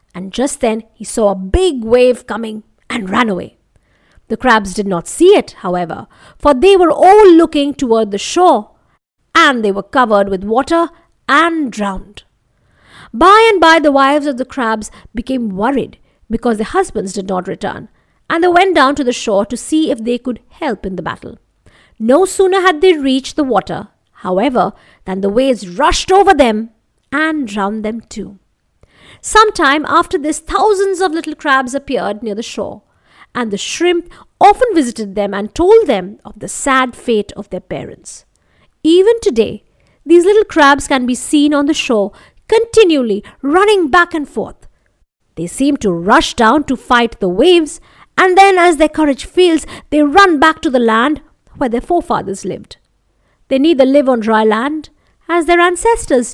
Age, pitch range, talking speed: 50-69, 220-335 Hz, 175 wpm